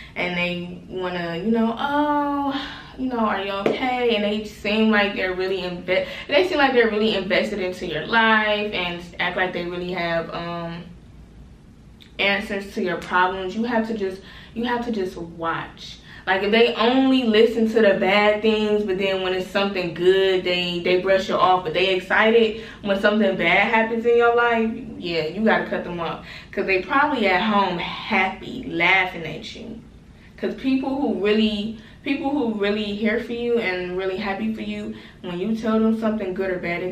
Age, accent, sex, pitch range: 20-39, American, female, 175-220 Hz